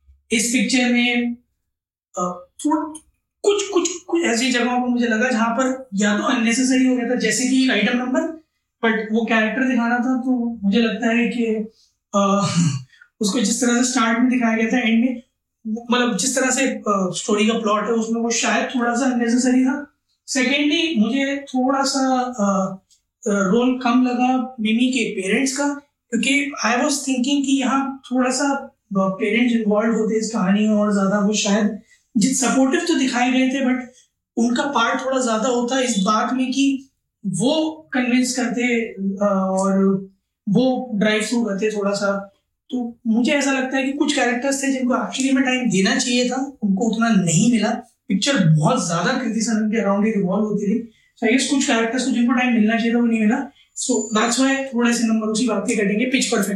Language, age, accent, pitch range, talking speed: Hindi, 20-39, native, 215-260 Hz, 145 wpm